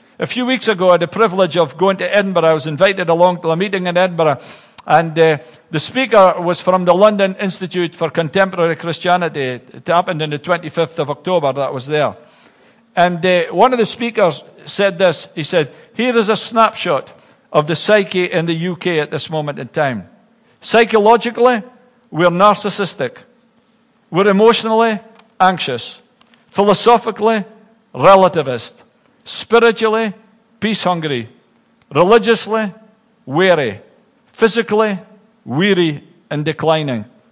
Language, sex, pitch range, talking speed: English, male, 170-220 Hz, 135 wpm